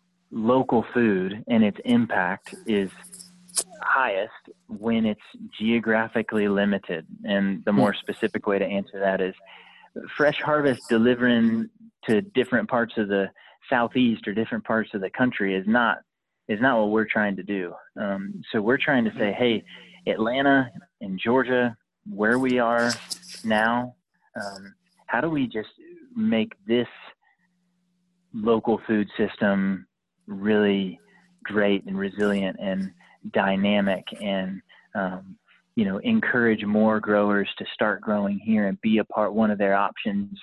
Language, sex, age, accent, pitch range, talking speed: English, male, 30-49, American, 100-145 Hz, 140 wpm